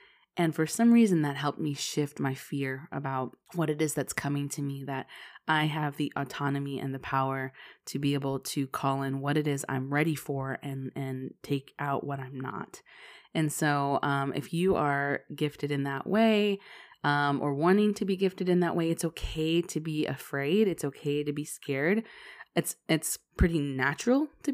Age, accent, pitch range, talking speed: 20-39, American, 140-170 Hz, 195 wpm